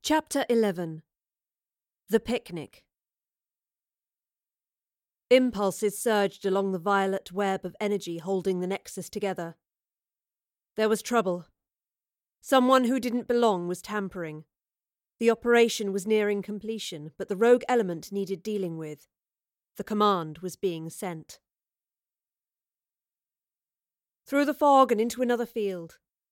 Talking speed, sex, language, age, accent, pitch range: 110 wpm, female, English, 40-59, British, 185-240 Hz